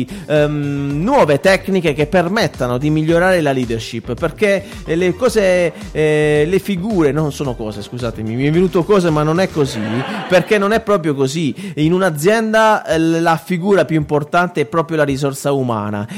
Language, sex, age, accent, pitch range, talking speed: Italian, male, 30-49, native, 135-175 Hz, 155 wpm